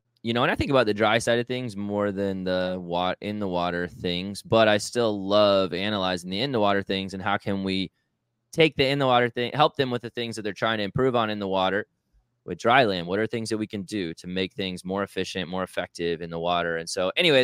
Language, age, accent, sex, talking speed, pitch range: English, 20-39, American, male, 250 wpm, 95-120 Hz